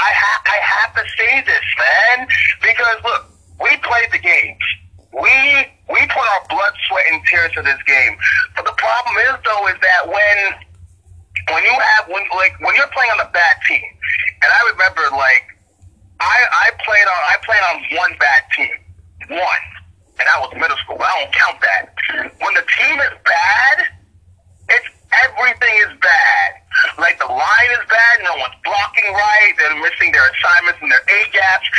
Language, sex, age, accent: English, male, 40-59, American